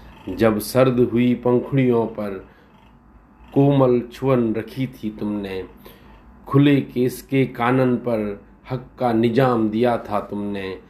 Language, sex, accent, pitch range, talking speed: Hindi, male, native, 100-120 Hz, 115 wpm